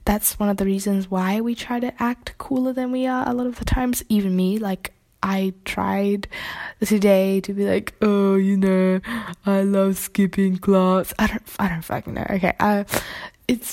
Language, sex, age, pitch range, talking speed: English, female, 10-29, 185-220 Hz, 190 wpm